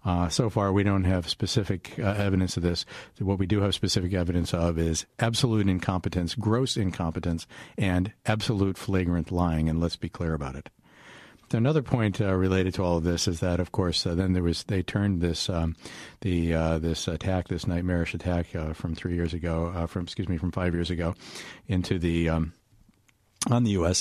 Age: 50-69